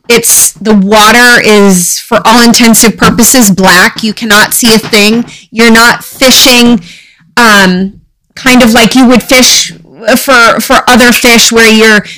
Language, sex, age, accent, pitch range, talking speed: English, female, 30-49, American, 195-235 Hz, 150 wpm